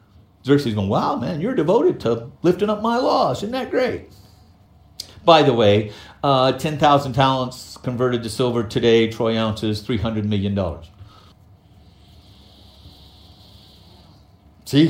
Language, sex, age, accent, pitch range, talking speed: English, male, 50-69, American, 95-150 Hz, 120 wpm